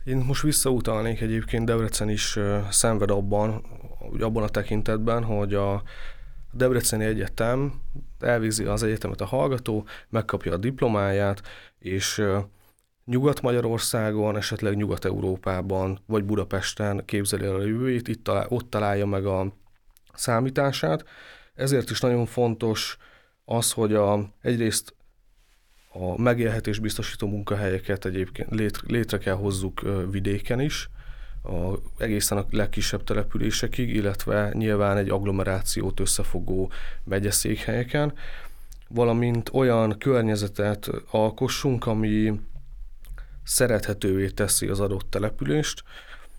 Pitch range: 100-120 Hz